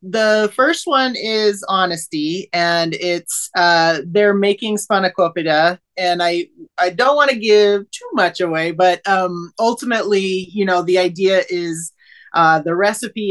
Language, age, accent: English, 30-49, American